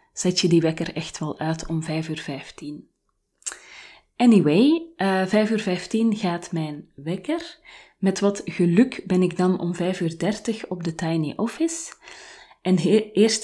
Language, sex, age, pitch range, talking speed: Dutch, female, 20-39, 165-205 Hz, 160 wpm